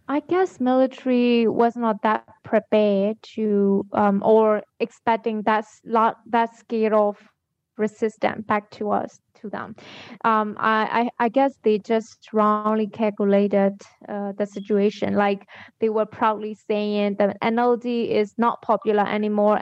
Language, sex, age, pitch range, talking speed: English, female, 20-39, 210-230 Hz, 140 wpm